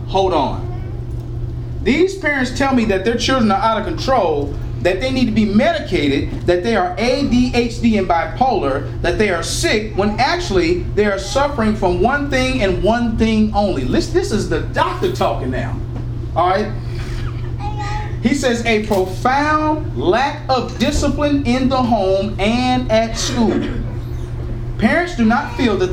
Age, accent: 30-49, American